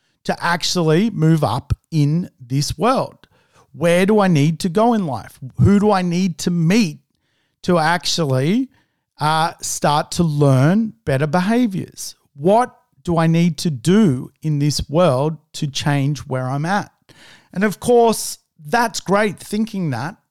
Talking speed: 150 wpm